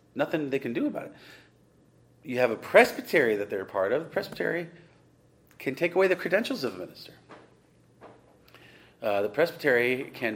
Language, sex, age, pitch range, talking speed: English, male, 40-59, 100-135 Hz, 170 wpm